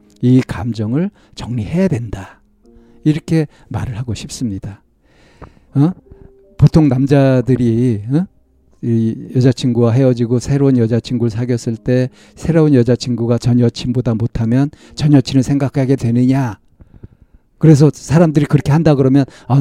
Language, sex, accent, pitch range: Korean, male, native, 115-145 Hz